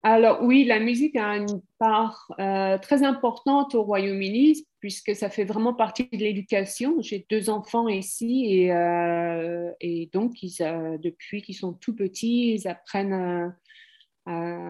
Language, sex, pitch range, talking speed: French, female, 175-225 Hz, 155 wpm